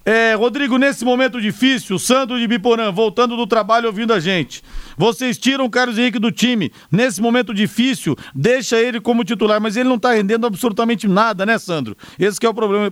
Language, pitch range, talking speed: Portuguese, 205-245 Hz, 190 wpm